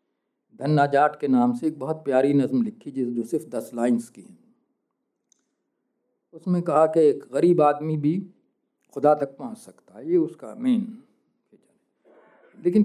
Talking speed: 155 wpm